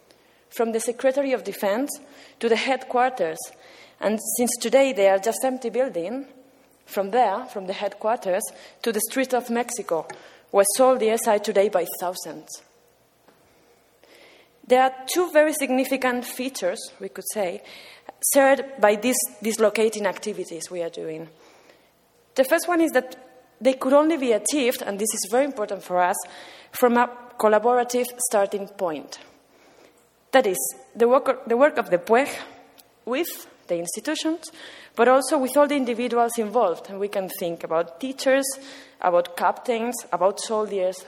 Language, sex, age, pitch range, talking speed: English, female, 20-39, 195-265 Hz, 145 wpm